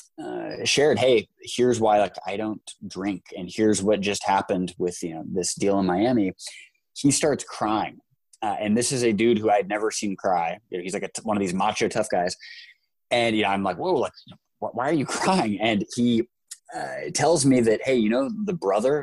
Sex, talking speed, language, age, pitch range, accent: male, 225 wpm, English, 20-39, 105-140 Hz, American